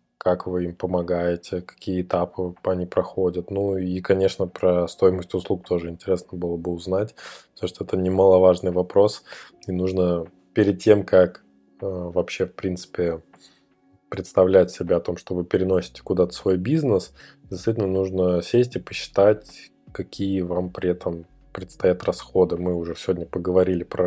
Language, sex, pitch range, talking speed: Russian, male, 90-95 Hz, 145 wpm